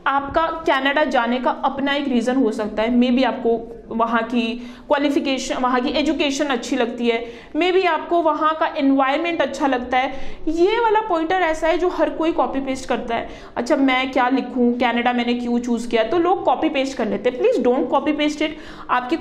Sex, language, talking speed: female, Punjabi, 200 wpm